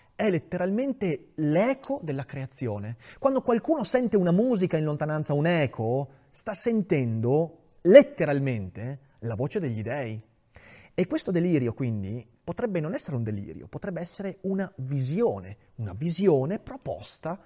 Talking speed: 125 wpm